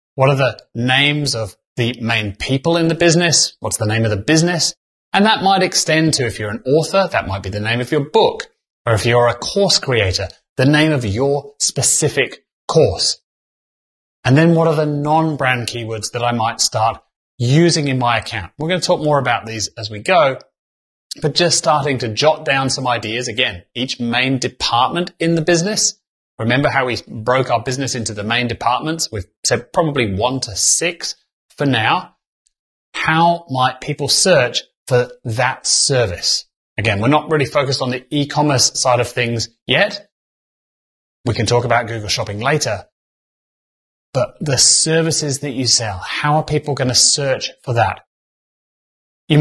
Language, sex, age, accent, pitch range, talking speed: English, male, 30-49, British, 120-155 Hz, 175 wpm